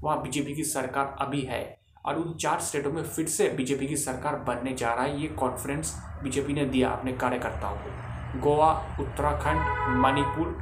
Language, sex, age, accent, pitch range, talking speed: Hindi, male, 20-39, native, 115-145 Hz, 175 wpm